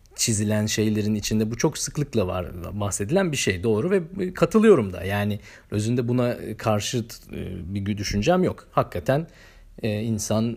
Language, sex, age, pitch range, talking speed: Turkish, male, 40-59, 100-120 Hz, 130 wpm